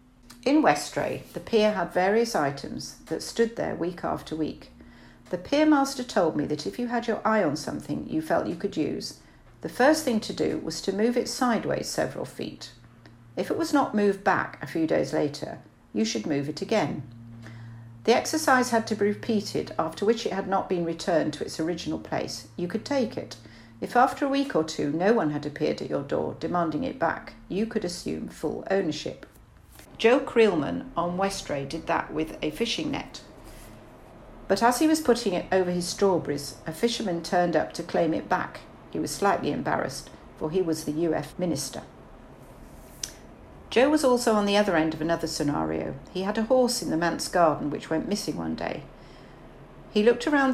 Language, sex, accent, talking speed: English, female, British, 195 wpm